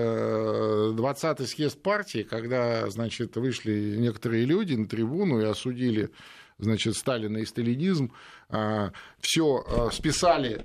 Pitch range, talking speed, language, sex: 115-155 Hz, 100 wpm, Russian, male